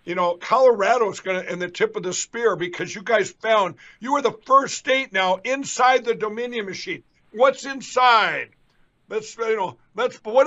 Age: 60-79